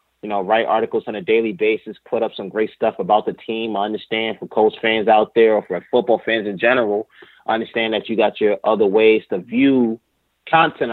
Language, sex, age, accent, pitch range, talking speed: English, male, 20-39, American, 100-110 Hz, 220 wpm